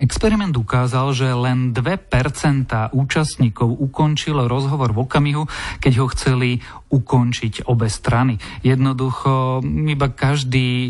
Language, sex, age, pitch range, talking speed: Slovak, male, 30-49, 120-145 Hz, 105 wpm